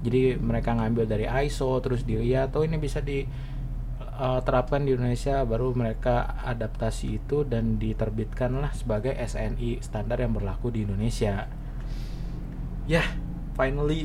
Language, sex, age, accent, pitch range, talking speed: Indonesian, male, 20-39, native, 115-130 Hz, 130 wpm